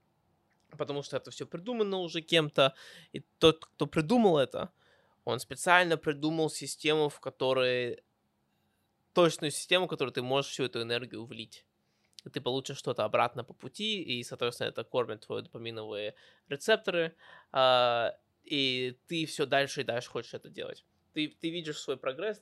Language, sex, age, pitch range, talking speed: Russian, male, 20-39, 125-170 Hz, 145 wpm